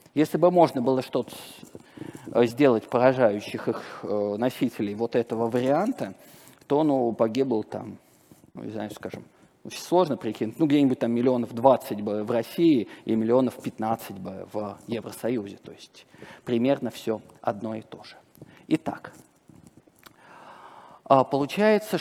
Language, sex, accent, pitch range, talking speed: Russian, male, native, 115-150 Hz, 130 wpm